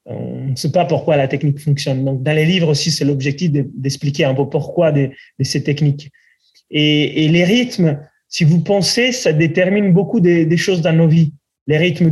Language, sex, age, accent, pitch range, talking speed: French, male, 20-39, French, 150-180 Hz, 205 wpm